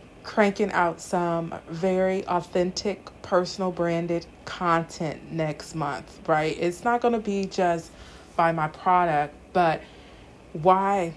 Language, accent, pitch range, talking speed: English, American, 165-200 Hz, 120 wpm